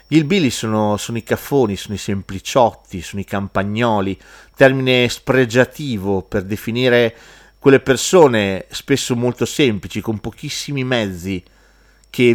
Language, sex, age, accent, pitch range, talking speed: Italian, male, 40-59, native, 100-140 Hz, 120 wpm